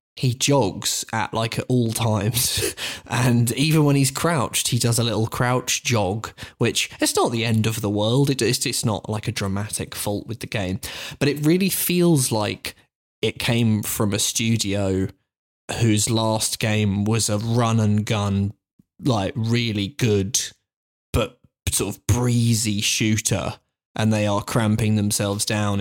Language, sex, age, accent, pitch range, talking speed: English, male, 20-39, British, 105-125 Hz, 160 wpm